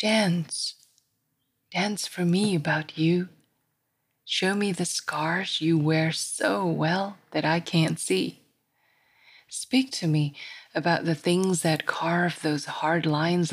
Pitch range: 155-190 Hz